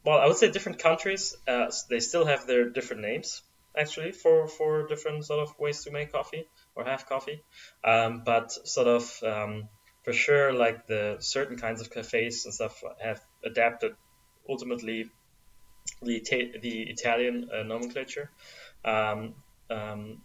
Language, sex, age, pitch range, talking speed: English, male, 20-39, 115-145 Hz, 150 wpm